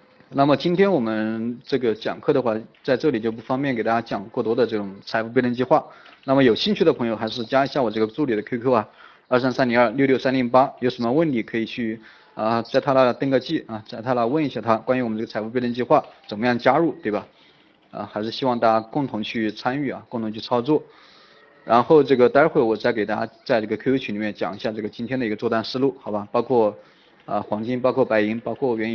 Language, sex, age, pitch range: Chinese, male, 20-39, 110-130 Hz